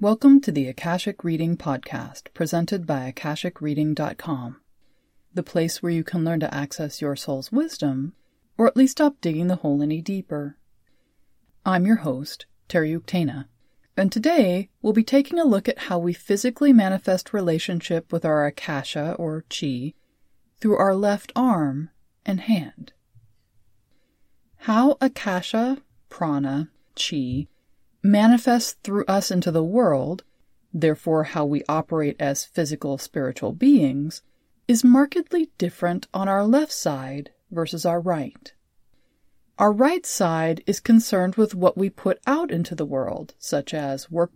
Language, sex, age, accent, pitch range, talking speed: English, female, 30-49, American, 150-220 Hz, 135 wpm